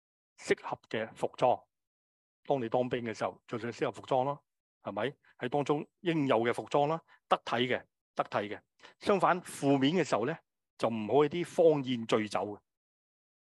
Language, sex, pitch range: Chinese, male, 105-140 Hz